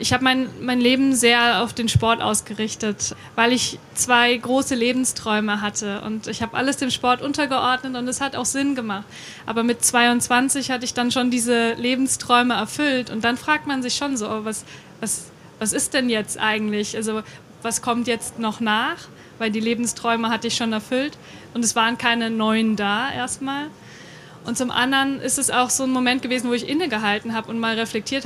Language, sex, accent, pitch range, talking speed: German, female, German, 220-255 Hz, 190 wpm